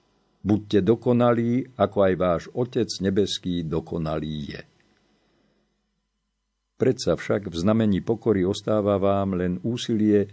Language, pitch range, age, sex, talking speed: Slovak, 85-110 Hz, 50-69, male, 105 wpm